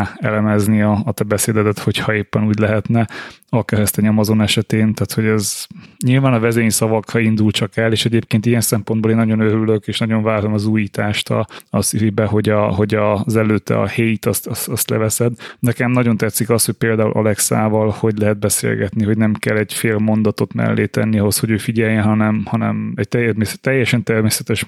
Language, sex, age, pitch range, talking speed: Hungarian, male, 20-39, 105-115 Hz, 185 wpm